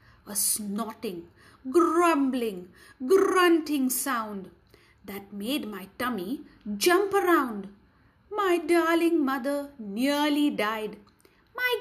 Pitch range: 205-305 Hz